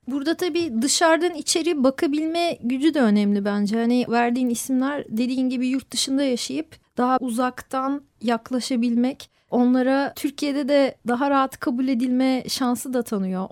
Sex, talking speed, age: female, 135 wpm, 40-59